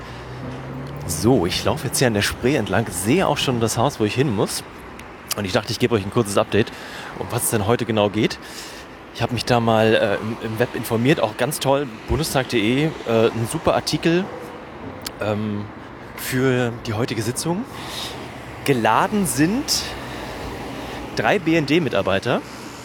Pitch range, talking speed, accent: 100-130 Hz, 155 wpm, German